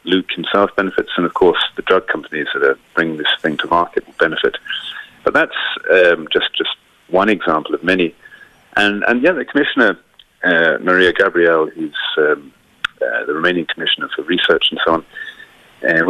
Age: 40-59